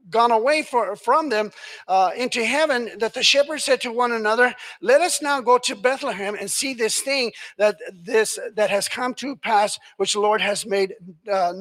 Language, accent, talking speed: English, American, 195 wpm